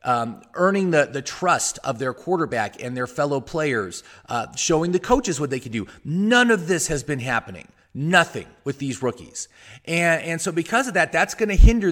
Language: English